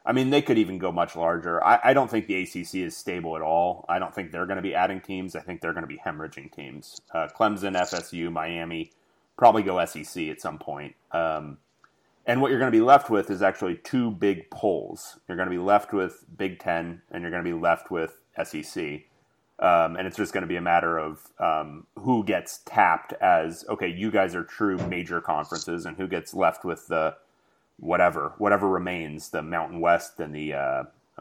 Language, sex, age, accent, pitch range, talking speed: English, male, 30-49, American, 85-105 Hz, 215 wpm